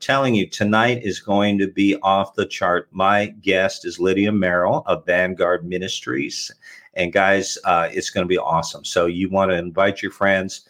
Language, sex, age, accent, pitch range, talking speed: English, male, 50-69, American, 95-110 Hz, 185 wpm